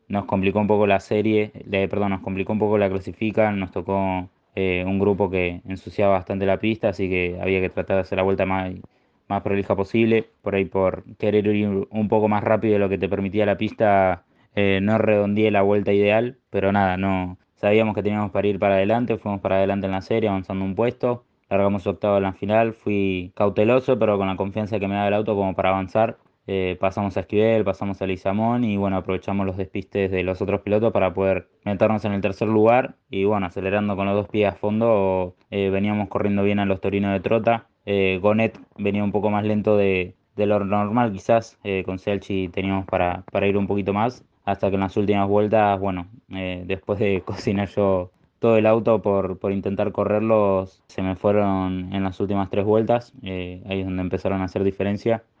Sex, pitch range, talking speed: male, 95-105 Hz, 210 wpm